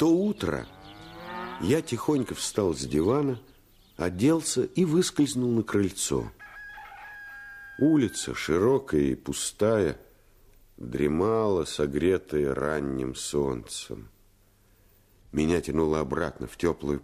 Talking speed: 90 wpm